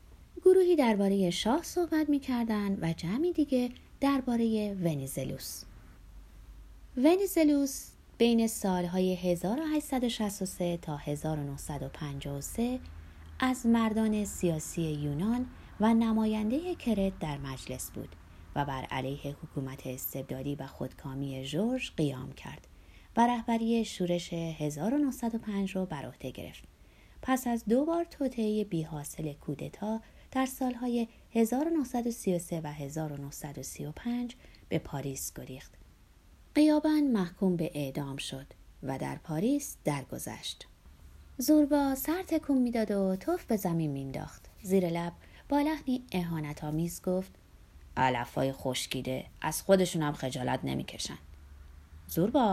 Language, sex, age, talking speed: Persian, female, 30-49, 105 wpm